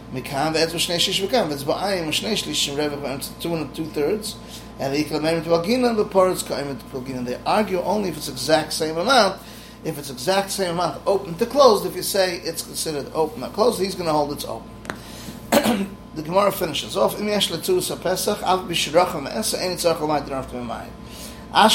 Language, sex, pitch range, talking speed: English, male, 145-185 Hz, 110 wpm